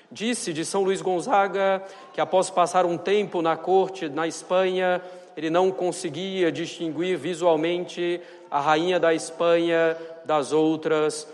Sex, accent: male, Brazilian